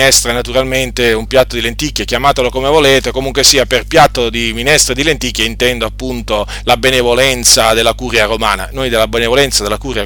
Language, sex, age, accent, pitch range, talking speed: Italian, male, 40-59, native, 120-150 Hz, 165 wpm